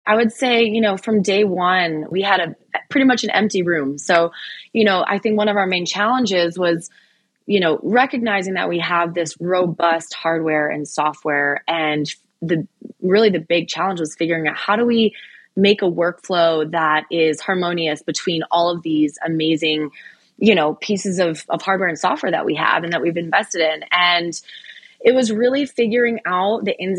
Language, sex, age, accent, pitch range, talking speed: English, female, 20-39, American, 160-200 Hz, 190 wpm